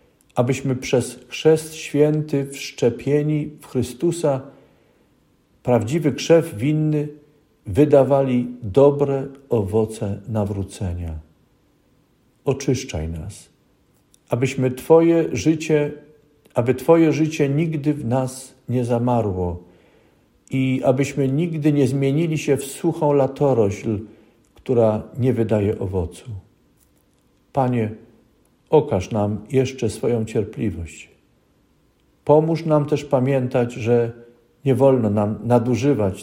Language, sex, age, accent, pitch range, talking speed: Polish, male, 50-69, native, 105-140 Hz, 90 wpm